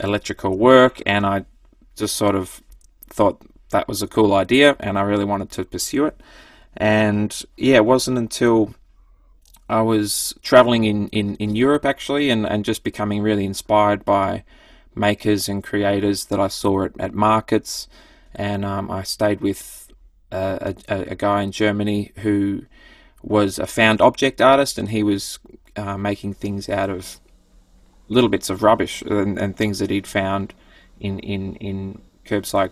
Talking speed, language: 160 wpm, English